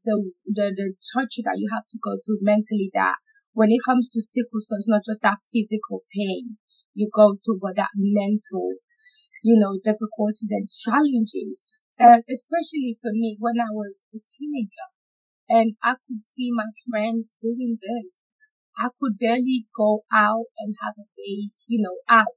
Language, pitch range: English, 215-245 Hz